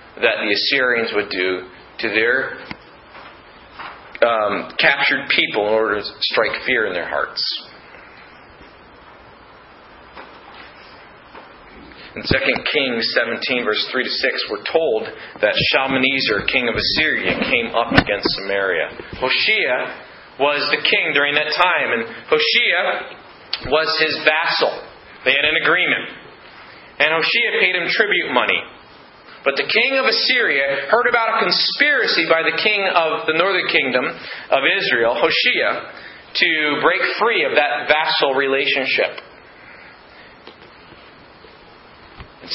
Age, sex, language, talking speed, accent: 30-49, male, English, 120 wpm, American